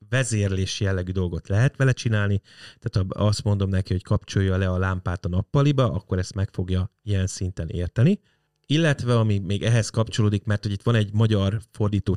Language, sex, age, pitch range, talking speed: Hungarian, male, 30-49, 100-120 Hz, 180 wpm